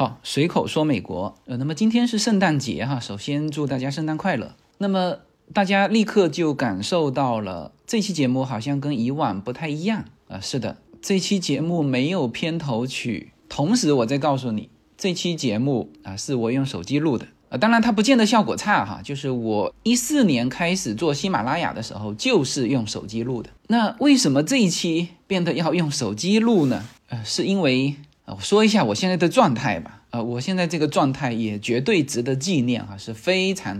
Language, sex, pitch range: Chinese, male, 120-195 Hz